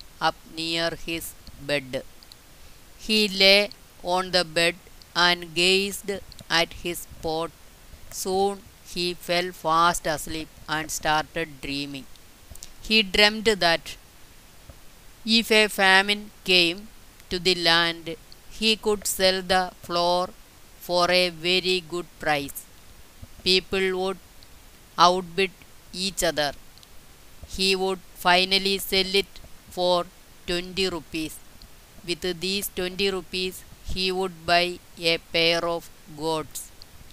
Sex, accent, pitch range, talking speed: female, native, 165-190 Hz, 105 wpm